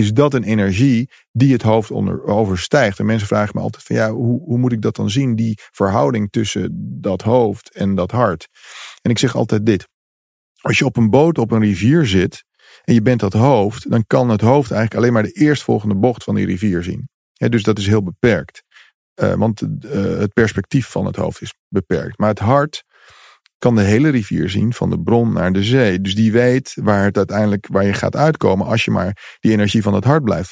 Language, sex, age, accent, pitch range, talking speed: English, male, 40-59, Dutch, 105-130 Hz, 220 wpm